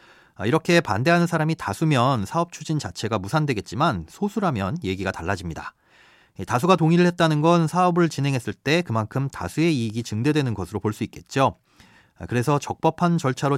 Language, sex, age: Korean, male, 30-49